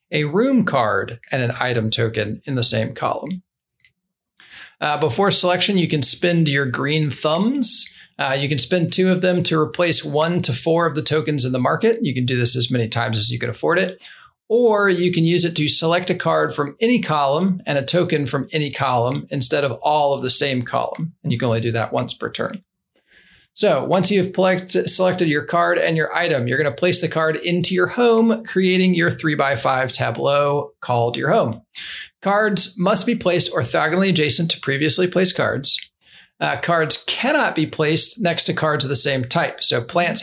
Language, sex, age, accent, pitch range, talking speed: English, male, 40-59, American, 135-180 Hz, 200 wpm